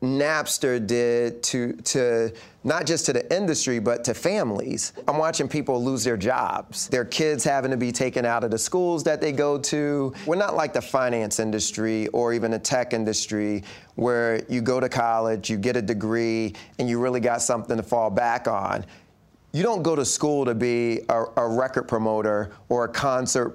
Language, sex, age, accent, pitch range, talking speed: English, male, 30-49, American, 115-145 Hz, 190 wpm